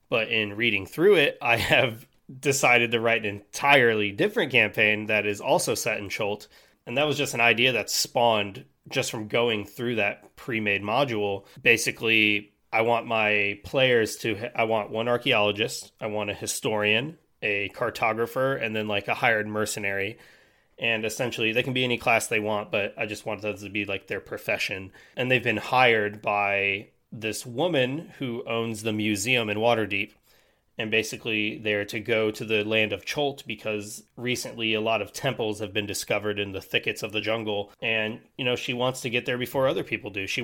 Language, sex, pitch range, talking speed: English, male, 105-120 Hz, 190 wpm